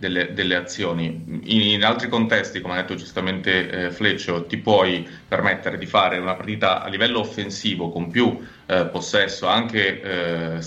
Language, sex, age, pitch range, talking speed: Italian, male, 30-49, 90-110 Hz, 165 wpm